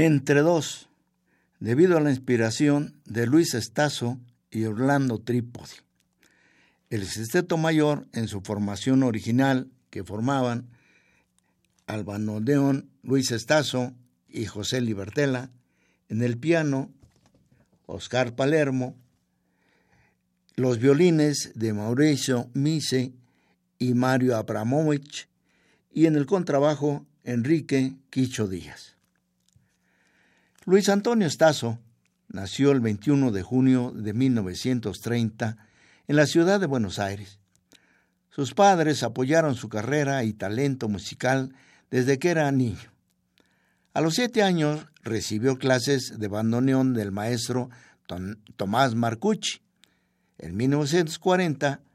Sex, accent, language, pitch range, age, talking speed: male, Mexican, Spanish, 110-150 Hz, 60-79, 105 wpm